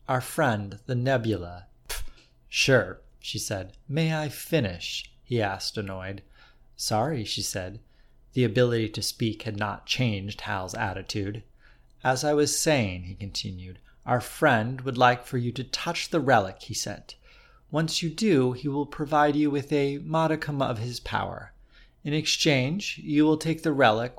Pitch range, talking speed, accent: 105-150 Hz, 155 wpm, American